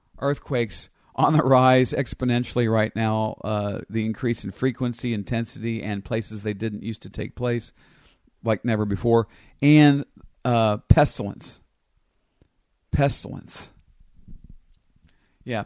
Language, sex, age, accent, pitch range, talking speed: English, male, 50-69, American, 105-120 Hz, 110 wpm